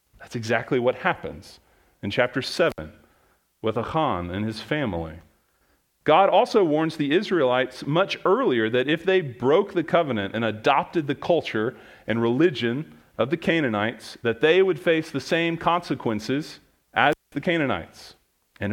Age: 40-59